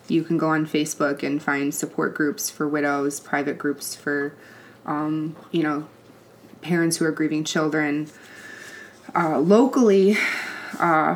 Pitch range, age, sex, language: 150-180 Hz, 20-39, female, English